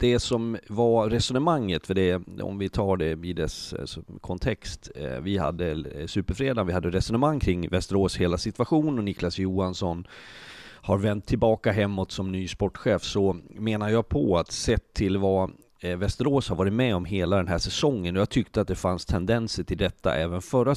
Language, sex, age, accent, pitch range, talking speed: Swedish, male, 30-49, native, 90-110 Hz, 175 wpm